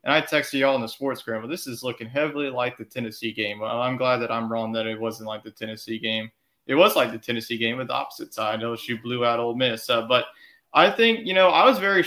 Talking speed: 275 wpm